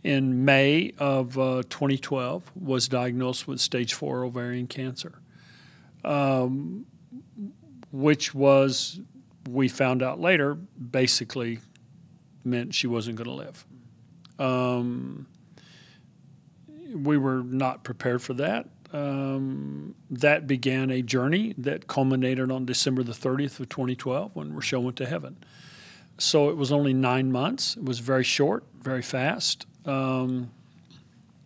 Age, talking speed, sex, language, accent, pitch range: 50-69, 120 wpm, male, English, American, 130-150 Hz